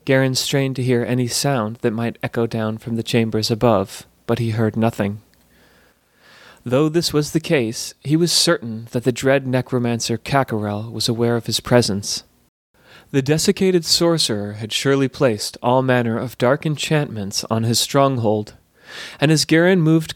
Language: English